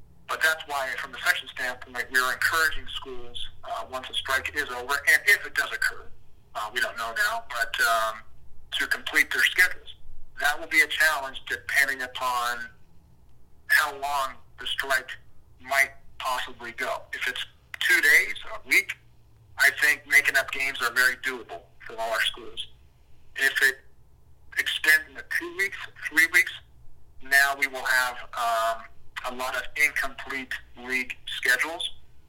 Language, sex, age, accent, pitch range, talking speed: English, male, 50-69, American, 90-135 Hz, 155 wpm